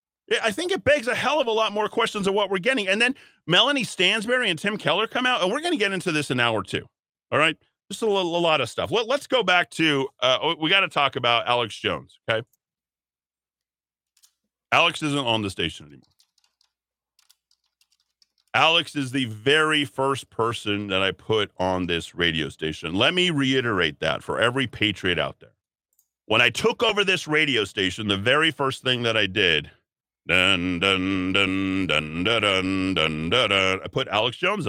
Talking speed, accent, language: 200 wpm, American, English